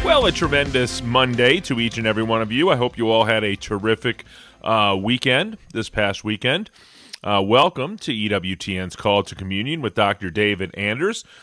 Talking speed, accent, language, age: 180 wpm, American, English, 30-49